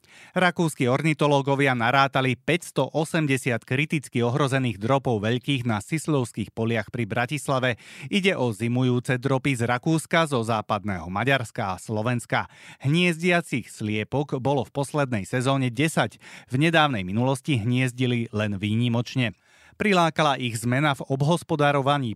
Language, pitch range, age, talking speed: Slovak, 115-150 Hz, 30-49, 115 wpm